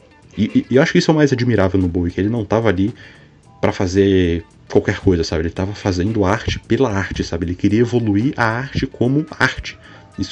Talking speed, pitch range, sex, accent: 220 wpm, 95-110 Hz, male, Brazilian